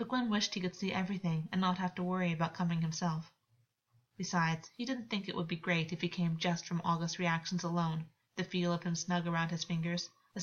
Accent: American